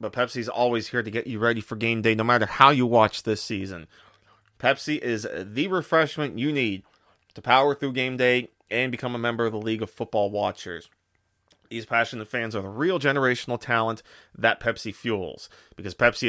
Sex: male